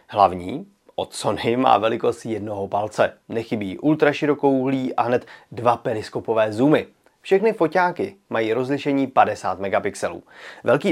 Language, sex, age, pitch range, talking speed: Czech, male, 30-49, 120-155 Hz, 120 wpm